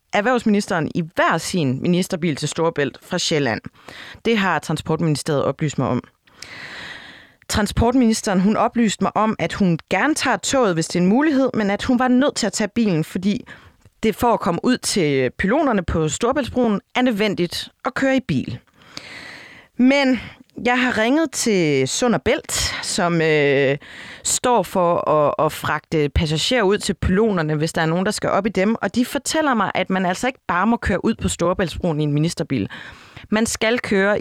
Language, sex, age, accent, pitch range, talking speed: Danish, female, 30-49, native, 155-225 Hz, 175 wpm